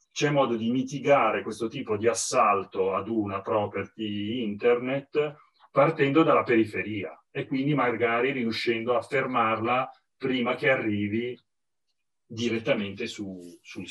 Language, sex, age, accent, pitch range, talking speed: Italian, male, 40-59, native, 105-130 Hz, 110 wpm